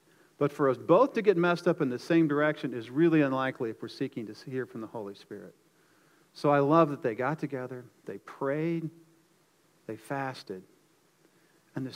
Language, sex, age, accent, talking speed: English, male, 40-59, American, 185 wpm